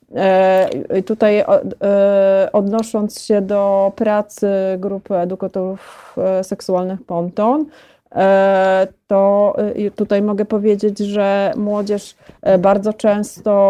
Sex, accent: female, native